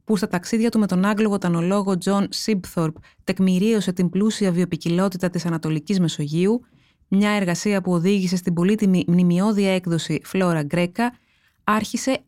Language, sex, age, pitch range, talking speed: Greek, female, 20-39, 175-220 Hz, 135 wpm